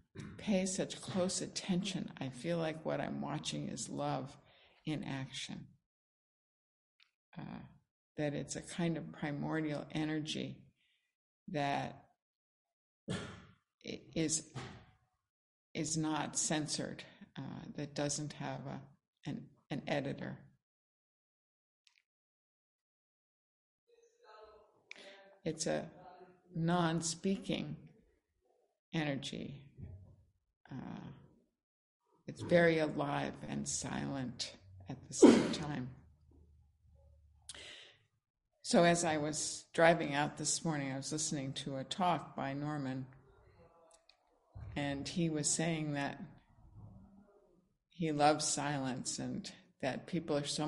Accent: American